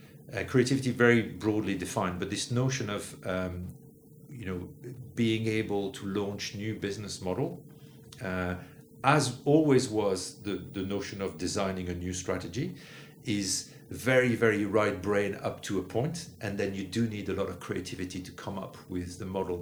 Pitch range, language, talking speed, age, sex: 90-120 Hz, English, 170 wpm, 50-69, male